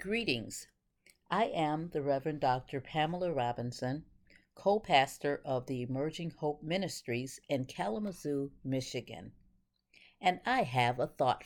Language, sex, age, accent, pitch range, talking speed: English, female, 50-69, American, 125-205 Hz, 115 wpm